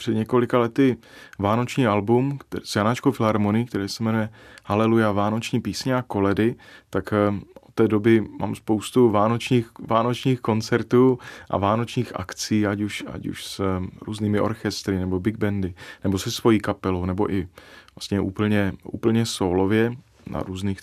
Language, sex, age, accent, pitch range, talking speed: Czech, male, 30-49, native, 100-115 Hz, 145 wpm